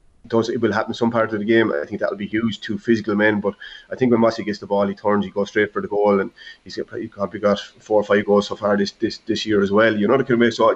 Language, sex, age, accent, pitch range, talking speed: English, male, 30-49, Irish, 100-115 Hz, 305 wpm